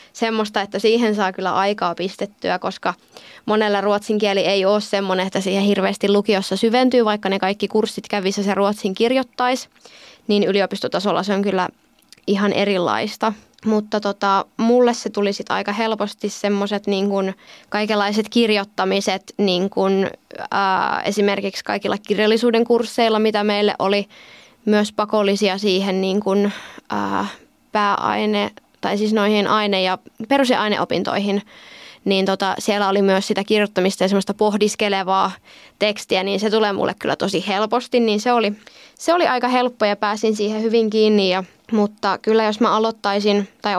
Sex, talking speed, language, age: female, 145 wpm, Finnish, 20-39